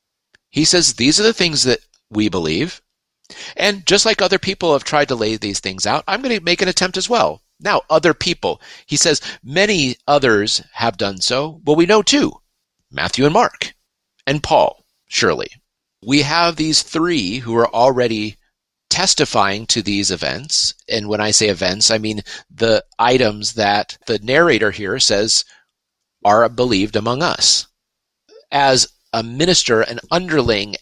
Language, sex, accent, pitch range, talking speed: English, male, American, 110-170 Hz, 160 wpm